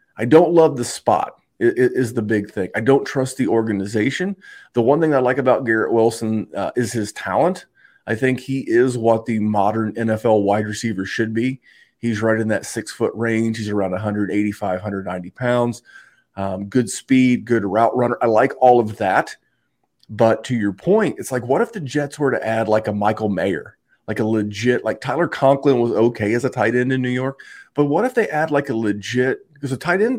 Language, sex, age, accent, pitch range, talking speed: English, male, 30-49, American, 110-140 Hz, 205 wpm